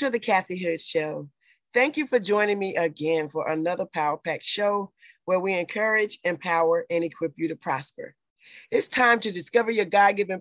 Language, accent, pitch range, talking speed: English, American, 170-230 Hz, 180 wpm